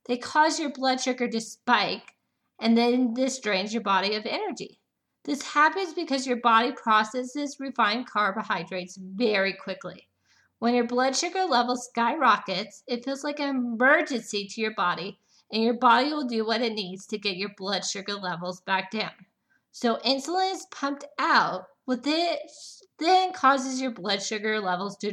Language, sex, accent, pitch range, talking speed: English, female, American, 220-285 Hz, 160 wpm